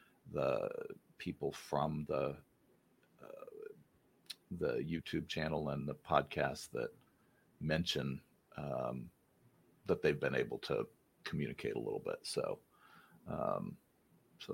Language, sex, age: English, male, 40-59